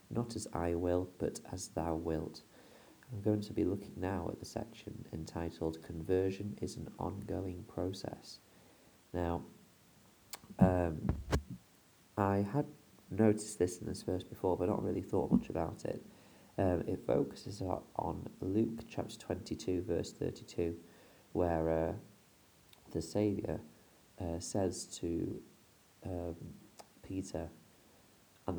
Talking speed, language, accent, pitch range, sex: 125 wpm, English, British, 85-105 Hz, male